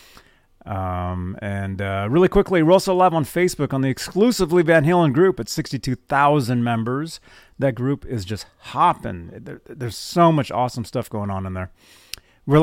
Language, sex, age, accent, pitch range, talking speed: English, male, 30-49, American, 110-145 Hz, 175 wpm